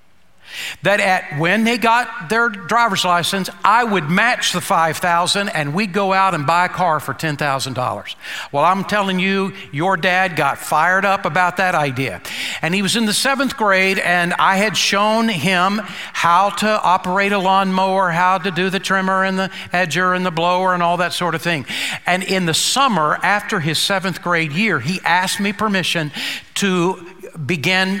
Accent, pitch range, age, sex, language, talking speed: American, 160-195 Hz, 60-79, male, English, 180 wpm